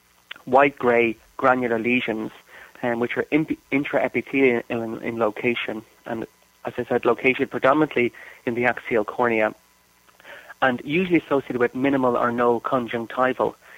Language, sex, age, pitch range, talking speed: English, male, 30-49, 115-130 Hz, 125 wpm